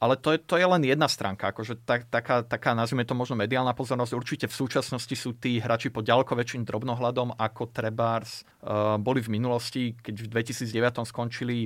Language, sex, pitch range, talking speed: Slovak, male, 110-130 Hz, 180 wpm